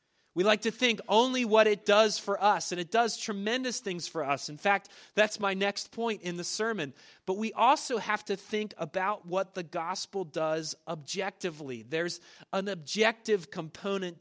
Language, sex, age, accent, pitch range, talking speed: English, male, 30-49, American, 175-220 Hz, 175 wpm